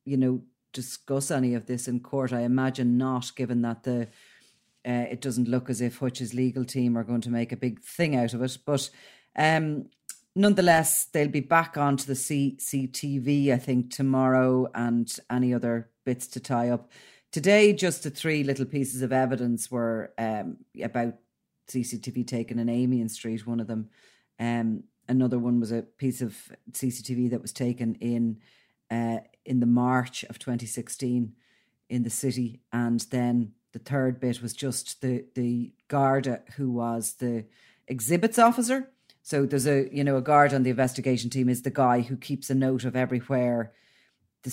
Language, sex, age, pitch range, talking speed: English, female, 30-49, 120-135 Hz, 170 wpm